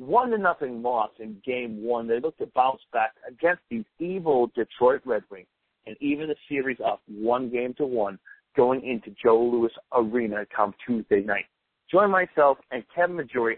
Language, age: English, 50-69